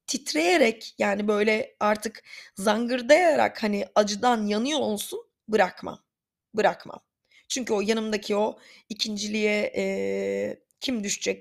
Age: 30-49